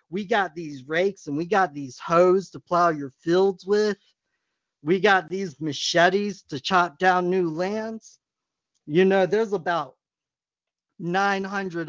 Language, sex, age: English, male, 40-59